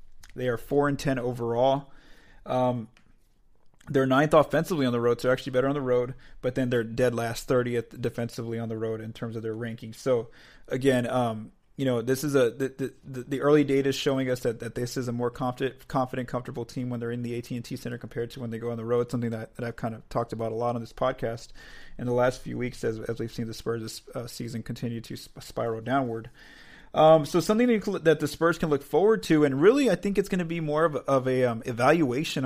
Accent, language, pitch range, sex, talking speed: American, English, 120-150 Hz, male, 240 wpm